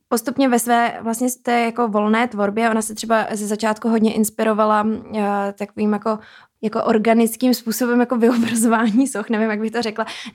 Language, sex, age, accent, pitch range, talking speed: Czech, female, 20-39, native, 210-225 Hz, 155 wpm